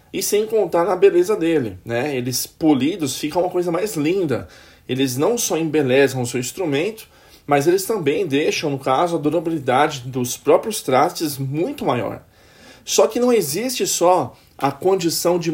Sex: male